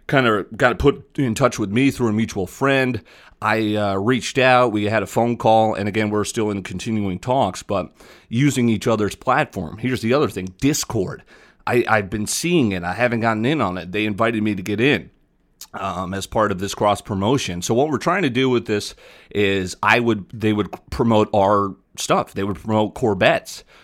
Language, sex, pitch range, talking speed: English, male, 95-115 Hz, 205 wpm